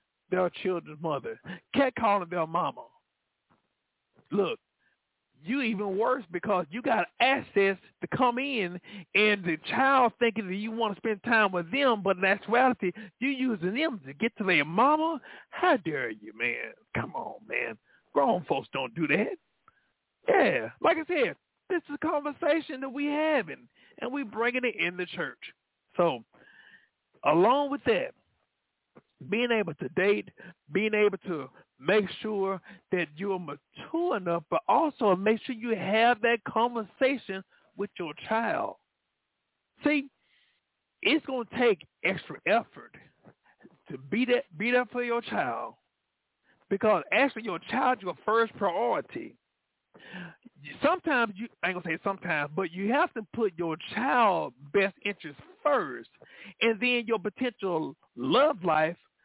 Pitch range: 185-260 Hz